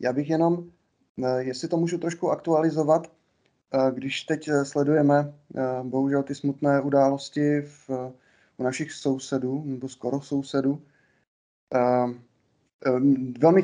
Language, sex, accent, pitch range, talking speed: Czech, male, native, 125-150 Hz, 95 wpm